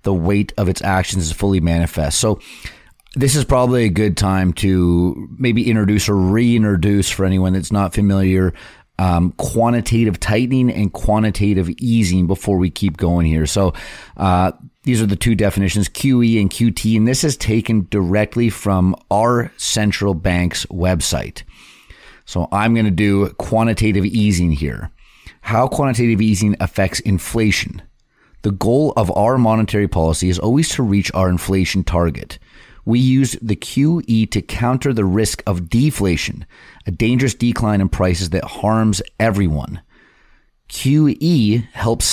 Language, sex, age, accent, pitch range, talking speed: English, male, 30-49, American, 95-115 Hz, 145 wpm